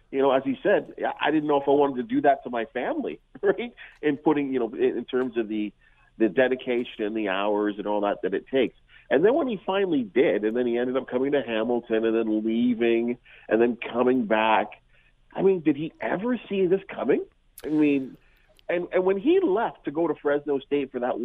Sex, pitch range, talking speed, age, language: male, 115-155 Hz, 225 wpm, 40-59, English